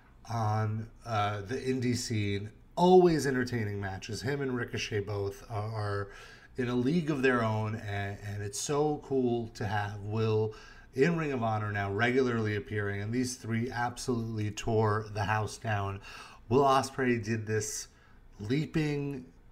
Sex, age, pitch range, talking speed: male, 30-49, 105-130 Hz, 145 wpm